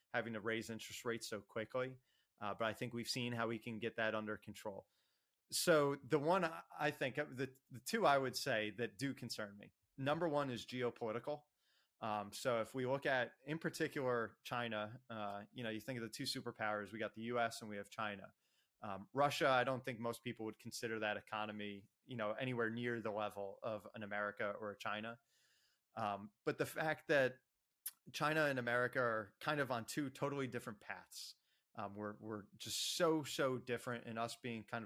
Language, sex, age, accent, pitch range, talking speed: English, male, 30-49, American, 110-130 Hz, 200 wpm